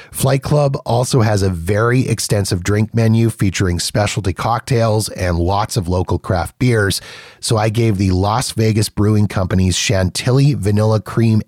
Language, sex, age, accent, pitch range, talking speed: English, male, 30-49, American, 95-120 Hz, 150 wpm